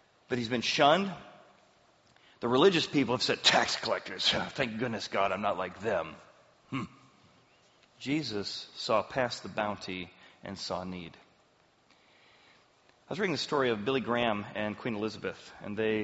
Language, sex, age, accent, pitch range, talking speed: English, male, 40-59, American, 105-130 Hz, 150 wpm